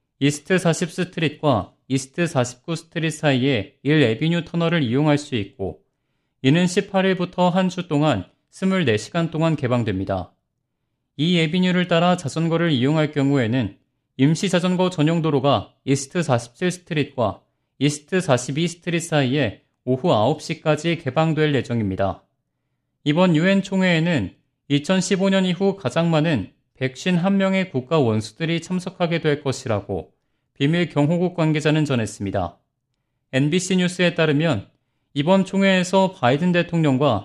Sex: male